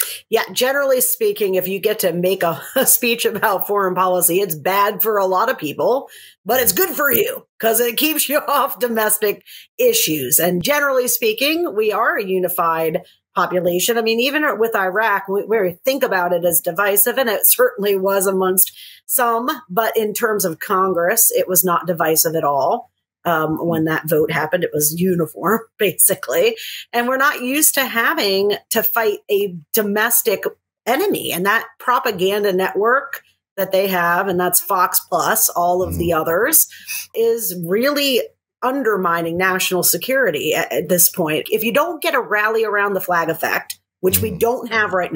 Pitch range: 180-270 Hz